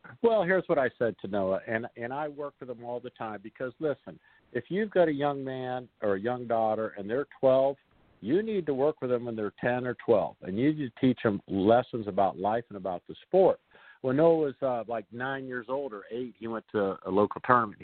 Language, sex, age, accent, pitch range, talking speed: English, male, 50-69, American, 100-130 Hz, 240 wpm